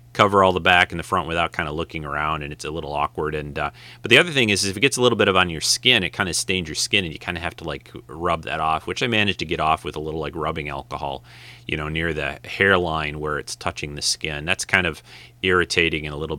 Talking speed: 290 wpm